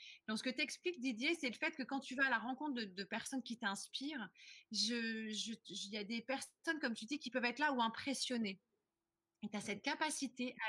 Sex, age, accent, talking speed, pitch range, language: female, 30-49, French, 225 wpm, 210-265 Hz, French